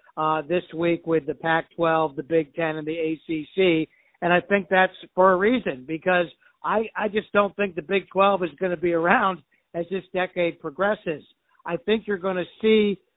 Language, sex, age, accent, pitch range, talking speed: English, male, 60-79, American, 170-195 Hz, 195 wpm